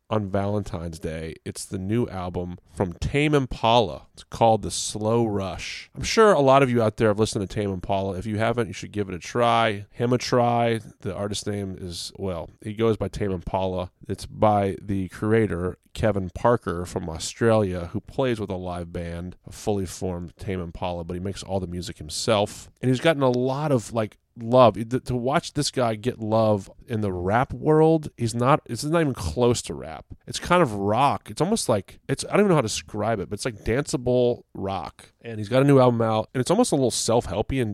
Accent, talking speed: American, 220 wpm